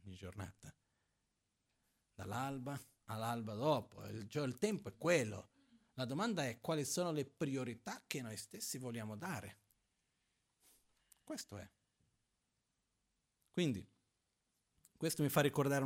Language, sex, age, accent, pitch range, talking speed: Italian, male, 40-59, native, 105-145 Hz, 105 wpm